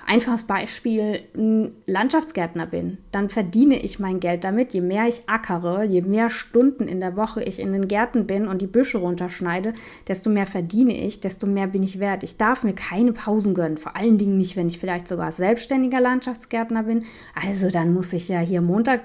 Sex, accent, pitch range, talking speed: female, German, 185-230 Hz, 200 wpm